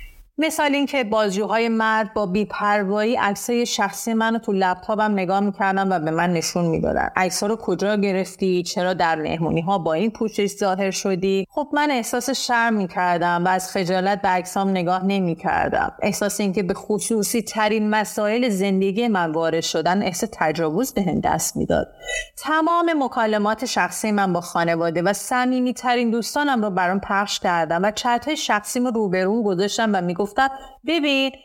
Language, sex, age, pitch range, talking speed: Persian, female, 30-49, 185-245 Hz, 160 wpm